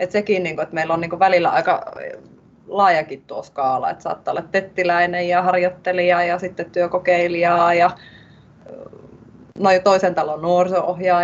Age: 30-49